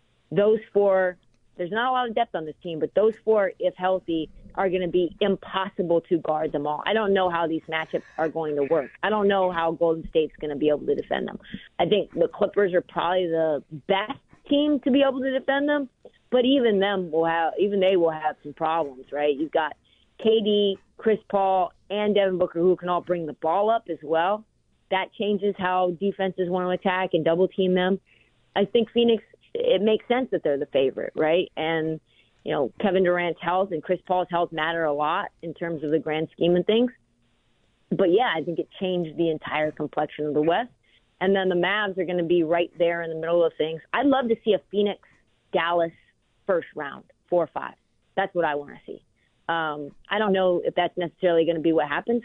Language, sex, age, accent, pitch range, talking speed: English, female, 30-49, American, 160-200 Hz, 220 wpm